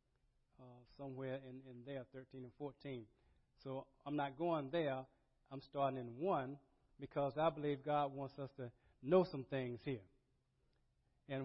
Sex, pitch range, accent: male, 140-190 Hz, American